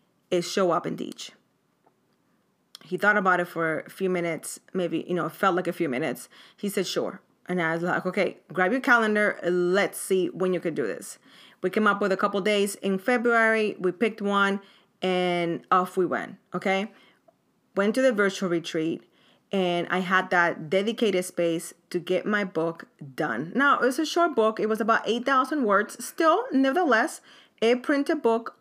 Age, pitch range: 30-49, 175-225 Hz